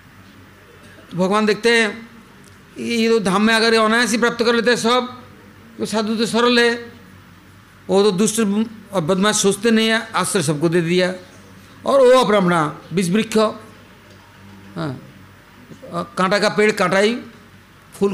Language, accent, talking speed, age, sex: English, Indian, 130 wpm, 50-69, male